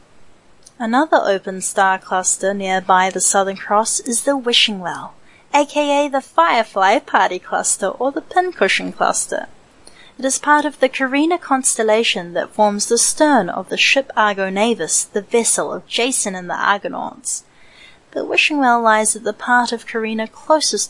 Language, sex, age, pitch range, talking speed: English, female, 30-49, 195-275 Hz, 150 wpm